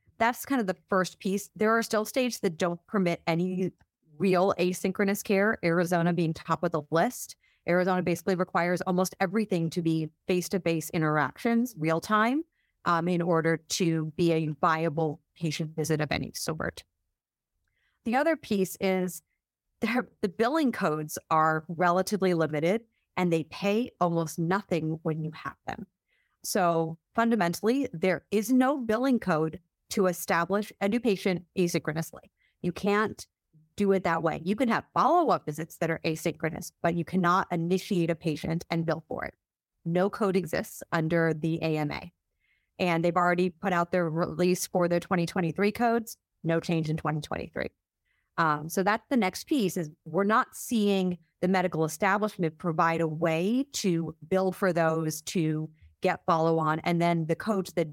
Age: 30-49